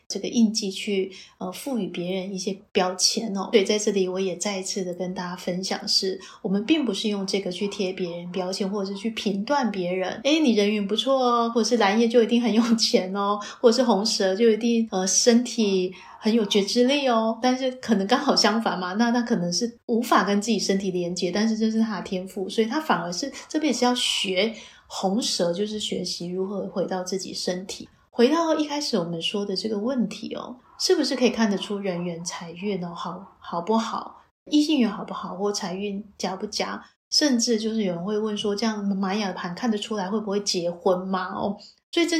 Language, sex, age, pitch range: Chinese, female, 30-49, 190-235 Hz